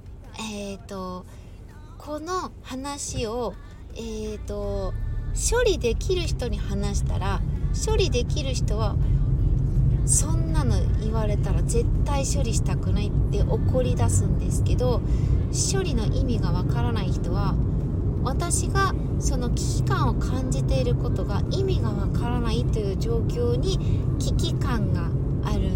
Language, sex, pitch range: Japanese, female, 100-135 Hz